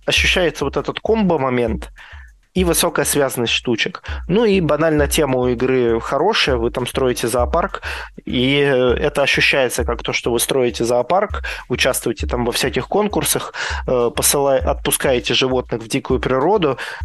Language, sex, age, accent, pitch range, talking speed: Russian, male, 20-39, native, 115-145 Hz, 135 wpm